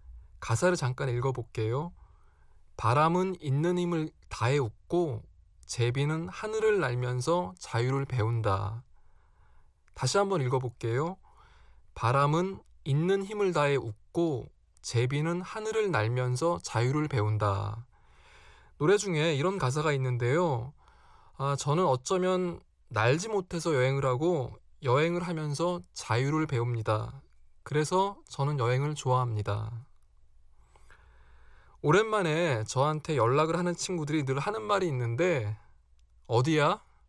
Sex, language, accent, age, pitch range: male, Korean, native, 20-39, 115-175 Hz